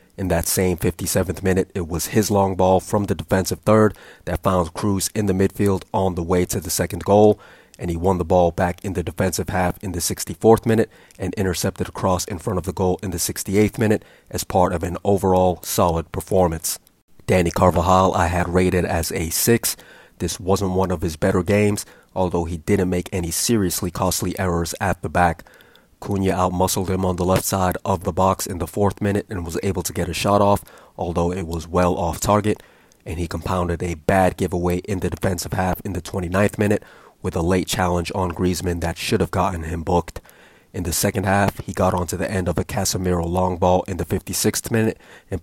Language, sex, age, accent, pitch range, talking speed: English, male, 30-49, American, 90-100 Hz, 210 wpm